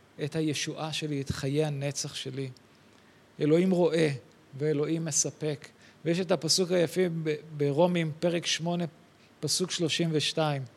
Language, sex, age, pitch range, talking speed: Hebrew, male, 40-59, 150-185 Hz, 115 wpm